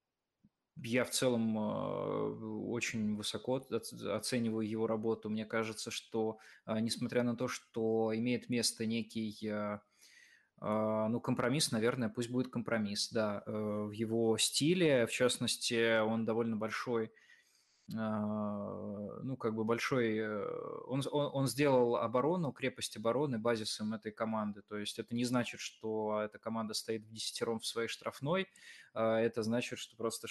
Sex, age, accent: male, 20-39, native